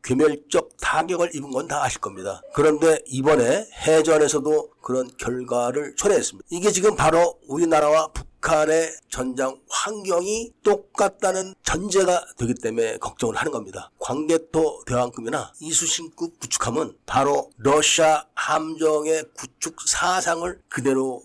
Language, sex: Korean, male